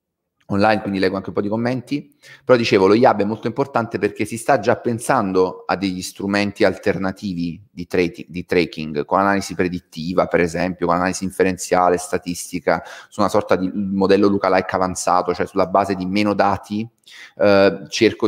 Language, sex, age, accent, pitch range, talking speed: Italian, male, 30-49, native, 95-105 Hz, 175 wpm